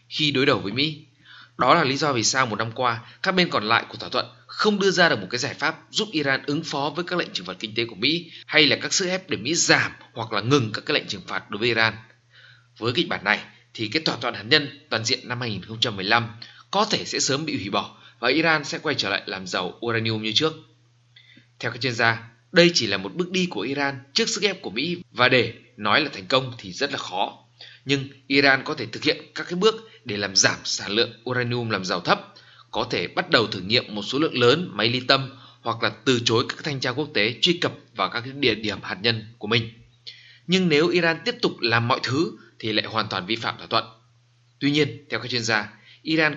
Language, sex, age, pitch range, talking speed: Vietnamese, male, 20-39, 115-150 Hz, 250 wpm